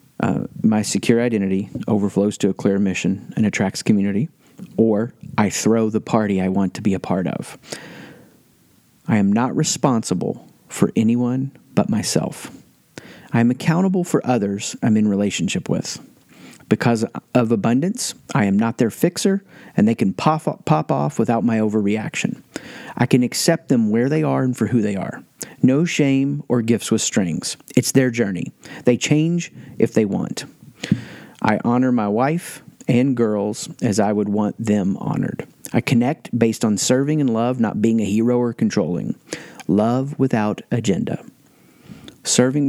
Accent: American